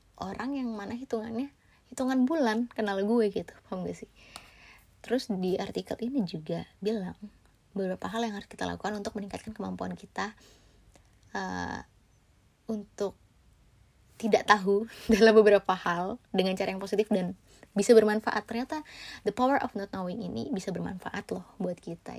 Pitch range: 175-220 Hz